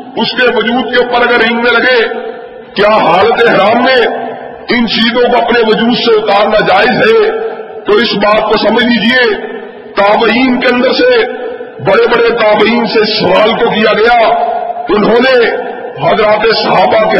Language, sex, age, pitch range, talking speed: Urdu, male, 50-69, 220-255 Hz, 155 wpm